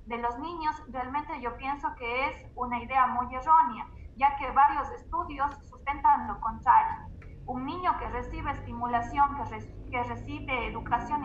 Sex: female